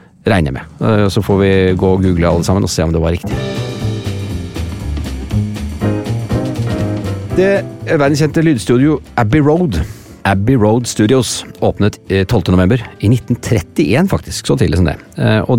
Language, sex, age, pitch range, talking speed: English, male, 40-59, 95-140 Hz, 140 wpm